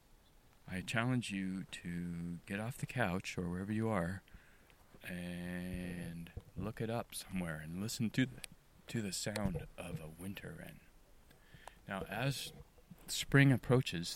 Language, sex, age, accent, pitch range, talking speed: English, male, 30-49, American, 85-100 Hz, 135 wpm